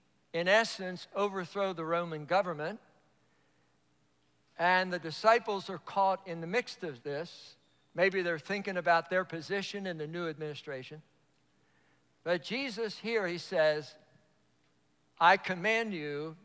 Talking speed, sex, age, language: 125 wpm, male, 60-79, English